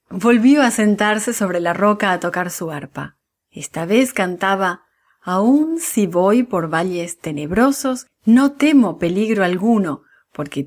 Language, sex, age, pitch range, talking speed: English, female, 40-59, 175-240 Hz, 135 wpm